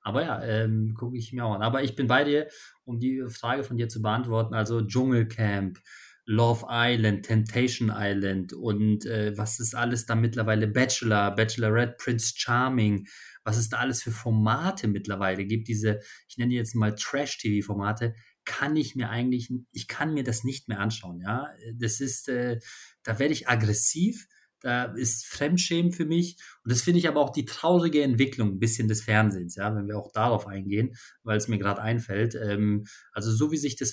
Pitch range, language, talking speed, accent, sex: 110-130 Hz, German, 185 wpm, German, male